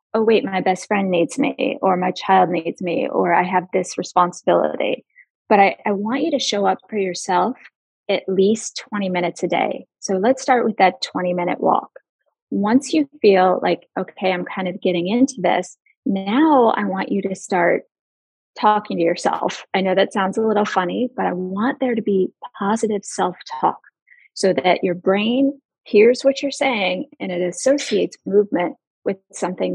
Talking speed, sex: 180 wpm, female